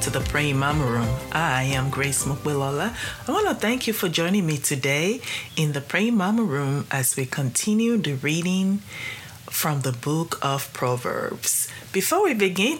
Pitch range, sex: 135-190 Hz, female